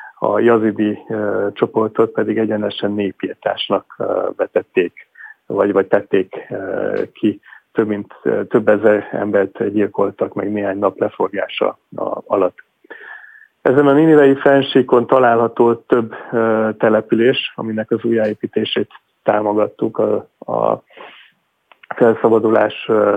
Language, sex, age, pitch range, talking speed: Hungarian, male, 40-59, 110-140 Hz, 95 wpm